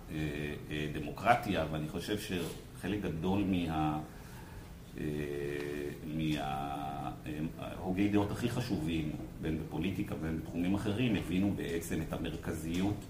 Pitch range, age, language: 75-95 Hz, 50-69, Hebrew